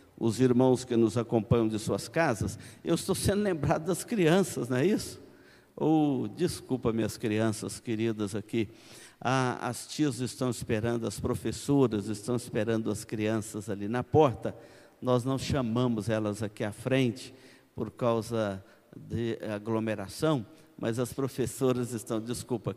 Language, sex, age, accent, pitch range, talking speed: Portuguese, male, 50-69, Brazilian, 110-155 Hz, 140 wpm